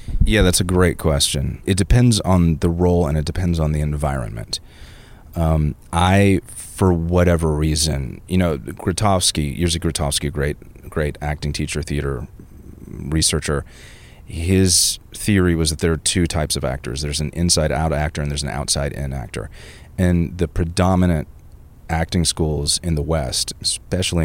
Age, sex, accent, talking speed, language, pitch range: 30-49, male, American, 150 wpm, English, 75-90 Hz